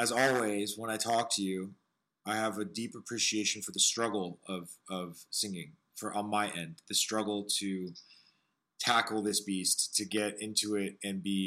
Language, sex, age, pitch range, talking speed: English, male, 20-39, 100-120 Hz, 180 wpm